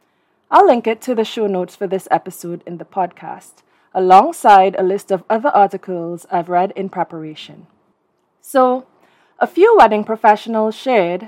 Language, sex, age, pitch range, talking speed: English, female, 20-39, 190-250 Hz, 155 wpm